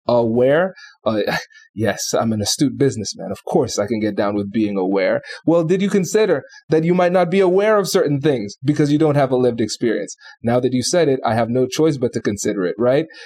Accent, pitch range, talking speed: American, 115-150 Hz, 225 wpm